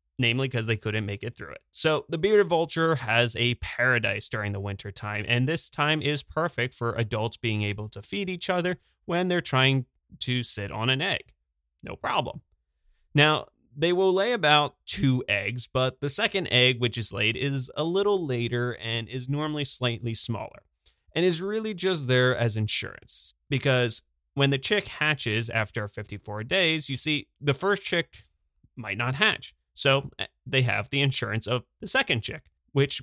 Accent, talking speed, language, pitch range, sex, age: American, 180 wpm, English, 110-150 Hz, male, 20-39